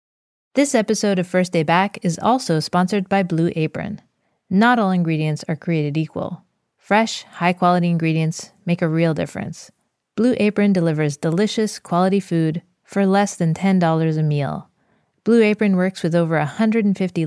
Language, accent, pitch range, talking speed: English, American, 165-200 Hz, 150 wpm